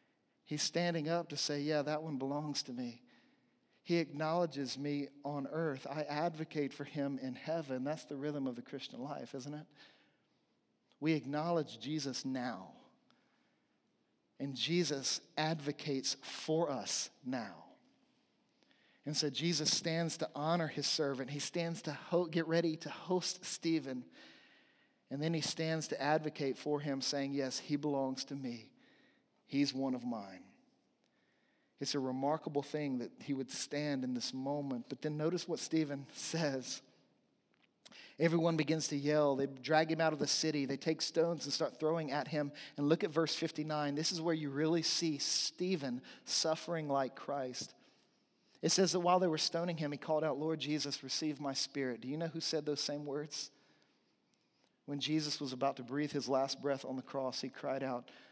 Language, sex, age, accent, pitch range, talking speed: English, male, 40-59, American, 140-165 Hz, 170 wpm